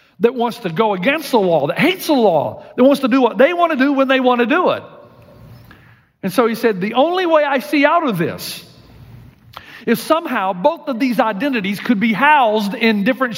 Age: 50-69